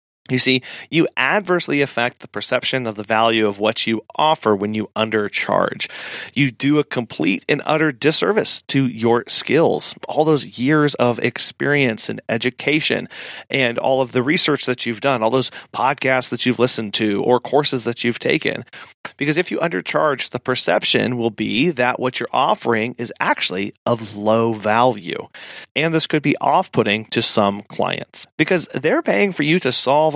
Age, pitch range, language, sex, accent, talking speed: 30-49, 115-140 Hz, English, male, American, 170 wpm